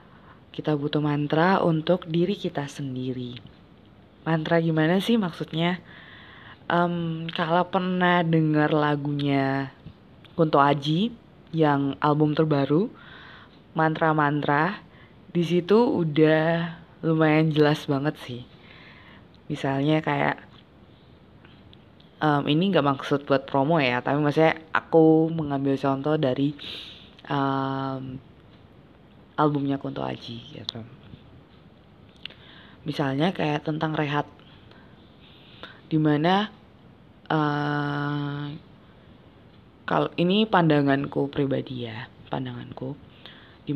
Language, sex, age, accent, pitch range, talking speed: Indonesian, female, 20-39, native, 140-160 Hz, 85 wpm